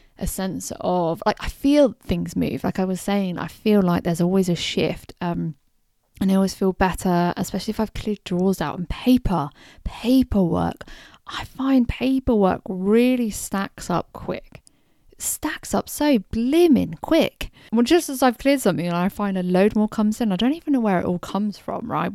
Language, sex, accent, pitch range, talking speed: English, female, British, 175-215 Hz, 190 wpm